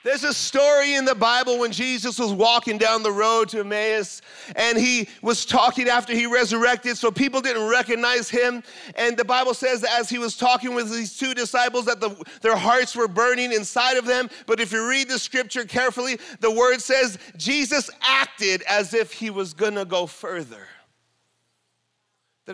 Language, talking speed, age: English, 185 wpm, 40-59